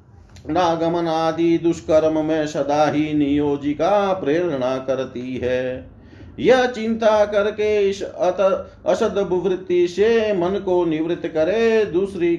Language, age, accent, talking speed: Hindi, 40-59, native, 85 wpm